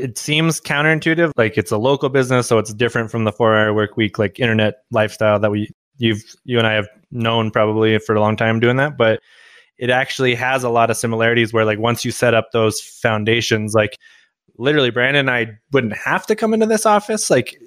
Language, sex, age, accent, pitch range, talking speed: English, male, 20-39, American, 110-130 Hz, 215 wpm